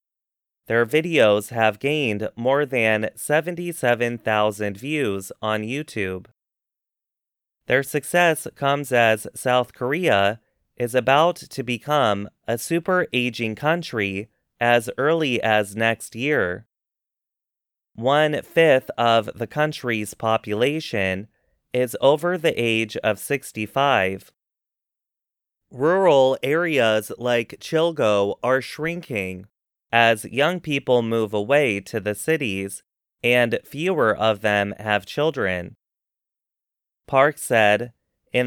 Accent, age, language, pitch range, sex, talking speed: American, 30-49, English, 105-140 Hz, male, 95 wpm